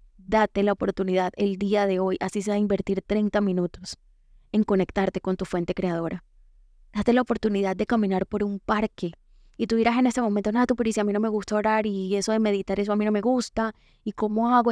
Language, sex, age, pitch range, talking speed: Spanish, female, 20-39, 185-215 Hz, 225 wpm